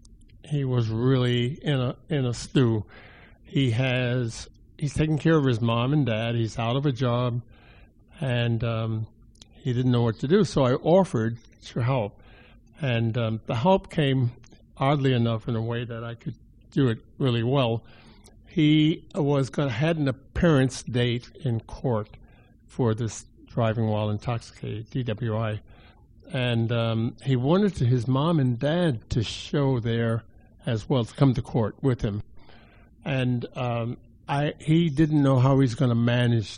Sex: male